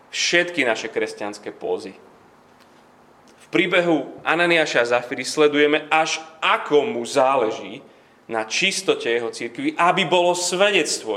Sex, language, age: male, Slovak, 30-49